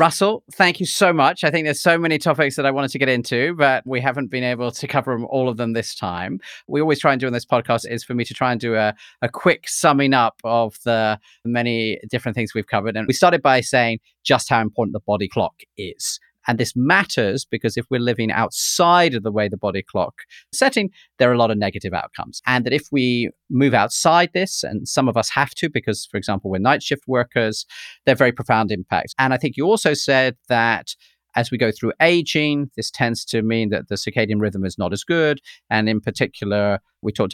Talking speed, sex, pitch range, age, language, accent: 230 wpm, male, 105-135 Hz, 40-59, English, British